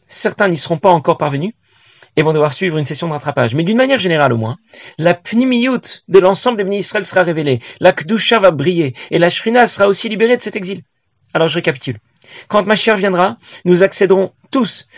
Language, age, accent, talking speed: French, 40-59, French, 210 wpm